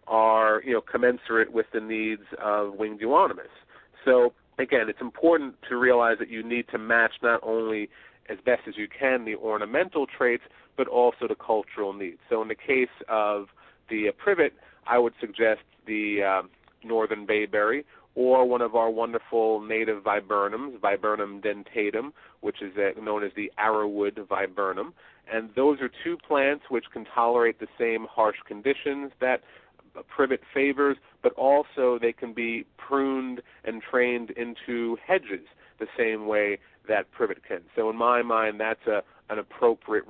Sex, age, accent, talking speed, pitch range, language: male, 40-59, American, 160 wpm, 110-125 Hz, English